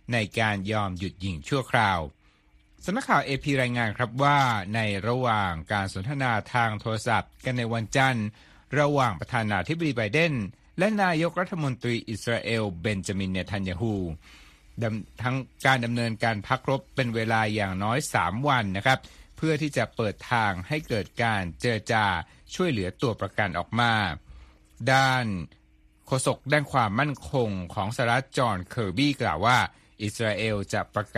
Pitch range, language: 100-130 Hz, Thai